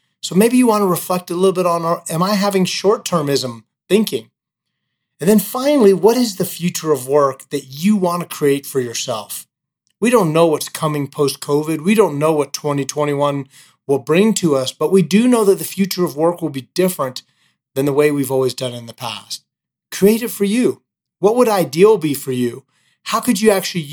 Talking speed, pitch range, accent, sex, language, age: 205 wpm, 135-185 Hz, American, male, English, 30-49